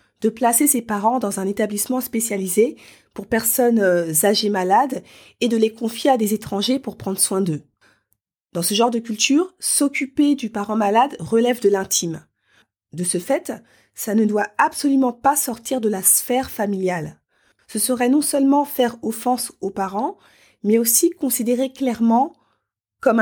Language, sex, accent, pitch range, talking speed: French, female, French, 195-250 Hz, 160 wpm